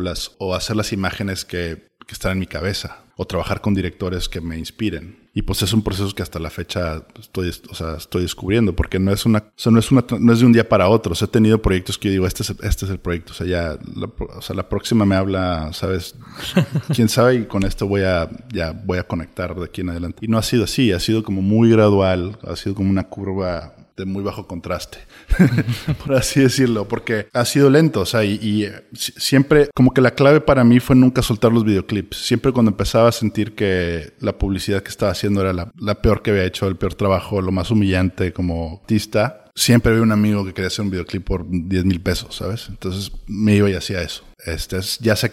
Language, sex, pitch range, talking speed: Spanish, male, 90-115 Hz, 235 wpm